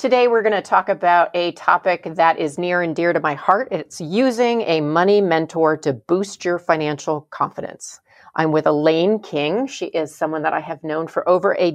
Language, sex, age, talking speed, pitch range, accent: English, female, 40-59, 205 wpm, 155-200 Hz, American